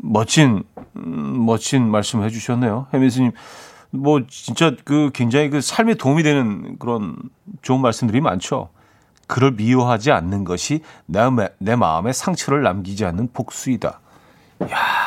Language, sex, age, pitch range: Korean, male, 40-59, 100-140 Hz